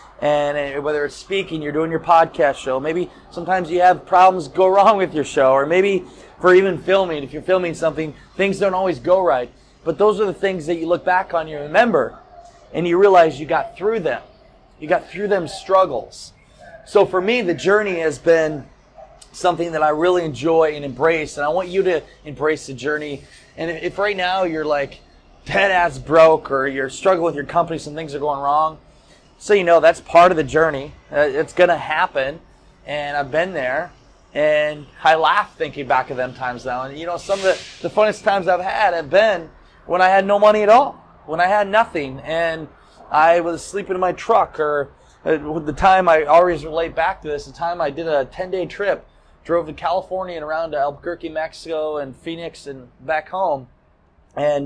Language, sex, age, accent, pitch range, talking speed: English, male, 20-39, American, 145-180 Hz, 205 wpm